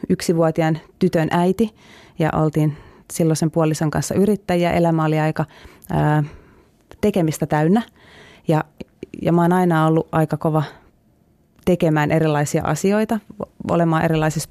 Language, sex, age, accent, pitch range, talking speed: Finnish, female, 30-49, native, 150-170 Hz, 110 wpm